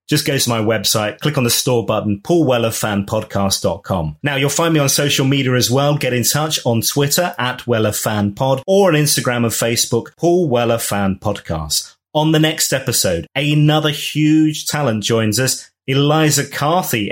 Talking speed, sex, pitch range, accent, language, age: 170 wpm, male, 105-140 Hz, British, English, 30-49